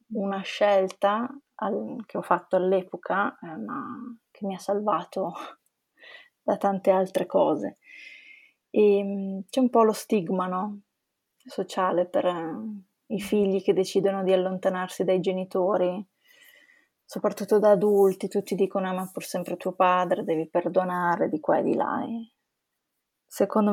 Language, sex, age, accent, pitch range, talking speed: Italian, female, 20-39, native, 185-220 Hz, 125 wpm